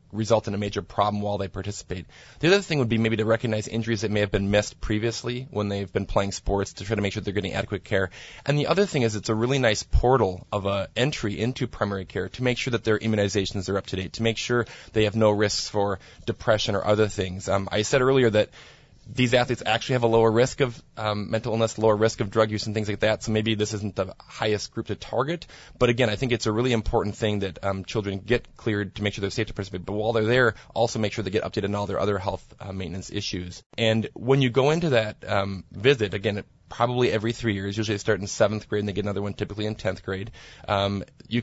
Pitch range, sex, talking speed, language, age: 100-115 Hz, male, 260 wpm, English, 20-39